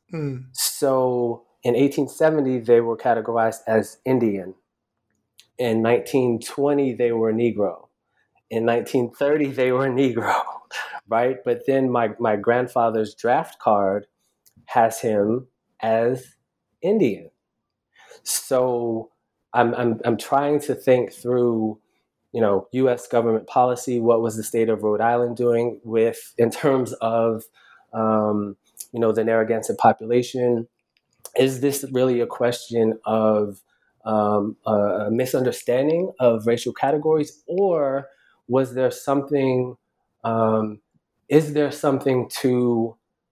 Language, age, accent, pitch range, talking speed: English, 20-39, American, 110-130 Hz, 115 wpm